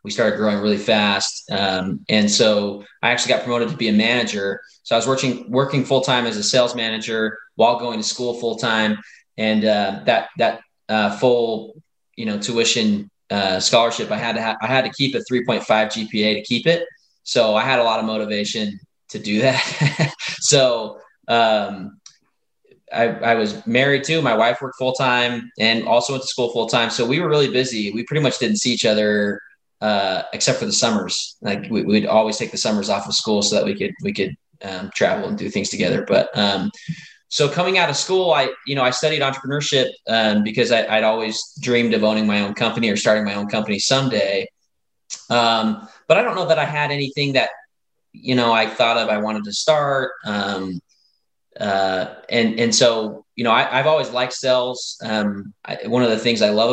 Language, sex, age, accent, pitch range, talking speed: English, male, 20-39, American, 110-135 Hz, 210 wpm